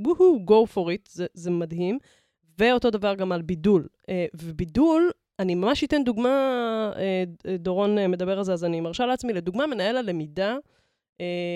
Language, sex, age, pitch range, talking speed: Hebrew, female, 20-39, 180-240 Hz, 140 wpm